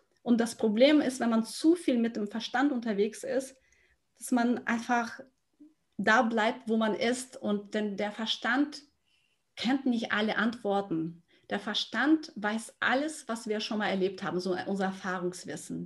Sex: female